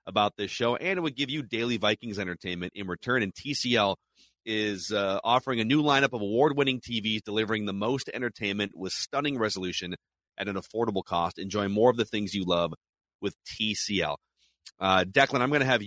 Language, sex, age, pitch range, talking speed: English, male, 30-49, 100-140 Hz, 185 wpm